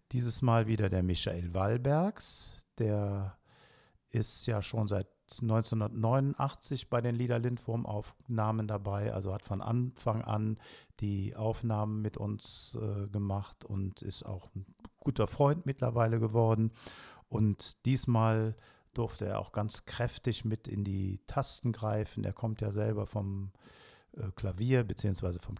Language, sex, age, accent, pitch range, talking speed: German, male, 50-69, German, 100-115 Hz, 135 wpm